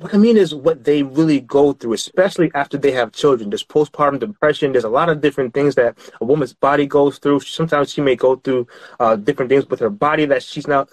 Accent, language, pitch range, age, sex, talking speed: American, English, 145-180 Hz, 30-49, male, 235 wpm